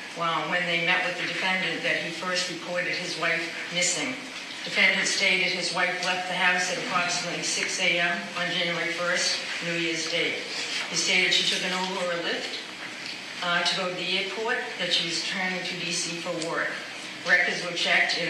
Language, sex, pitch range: English, female, 165-180 Hz